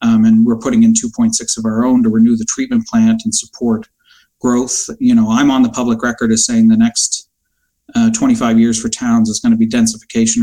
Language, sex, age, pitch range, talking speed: English, male, 40-59, 215-240 Hz, 220 wpm